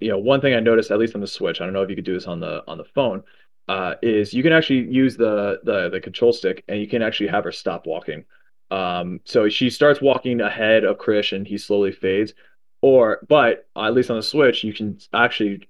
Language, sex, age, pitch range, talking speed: English, male, 20-39, 100-130 Hz, 250 wpm